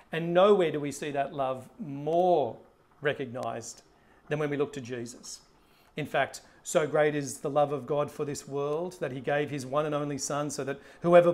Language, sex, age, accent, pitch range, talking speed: English, male, 40-59, Australian, 135-165 Hz, 200 wpm